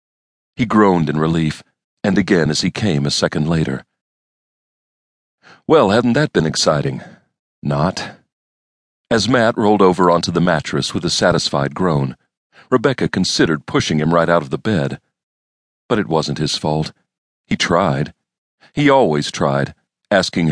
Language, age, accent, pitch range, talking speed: English, 40-59, American, 75-95 Hz, 145 wpm